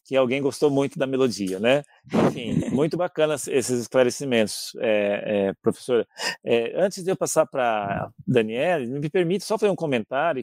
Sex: male